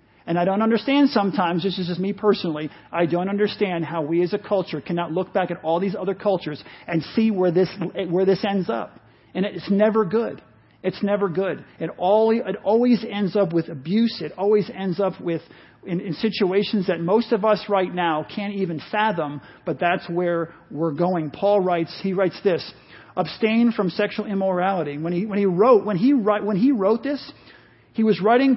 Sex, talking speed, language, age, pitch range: male, 195 wpm, English, 40-59, 180-230 Hz